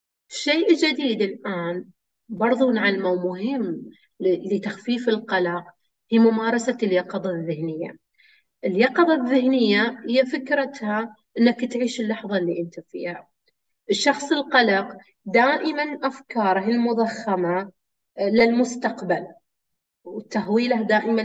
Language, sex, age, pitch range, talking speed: Arabic, female, 30-49, 190-250 Hz, 85 wpm